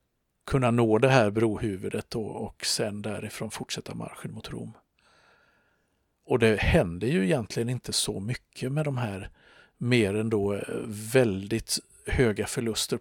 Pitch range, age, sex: 100-120 Hz, 50-69, male